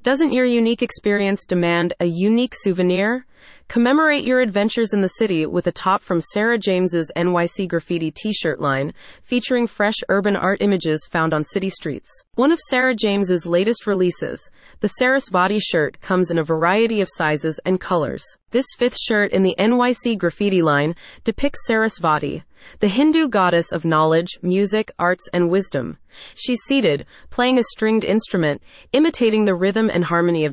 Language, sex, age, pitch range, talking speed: English, female, 30-49, 175-230 Hz, 160 wpm